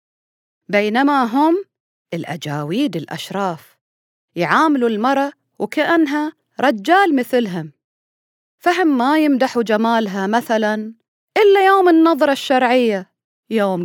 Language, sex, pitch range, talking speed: Arabic, female, 195-290 Hz, 80 wpm